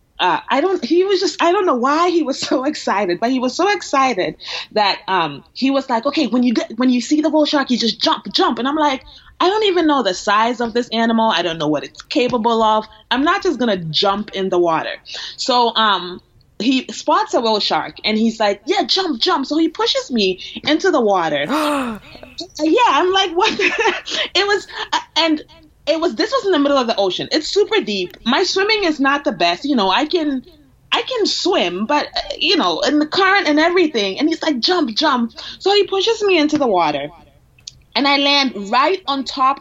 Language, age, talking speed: English, 20-39, 220 wpm